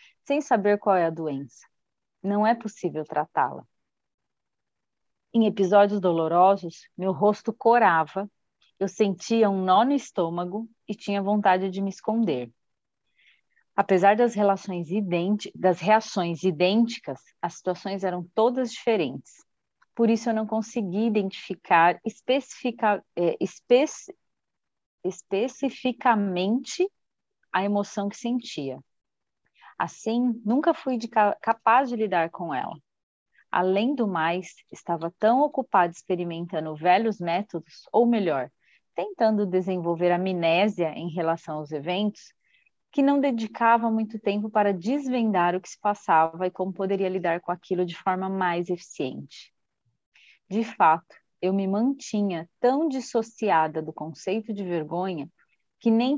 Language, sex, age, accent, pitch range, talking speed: Portuguese, female, 30-49, Brazilian, 175-225 Hz, 115 wpm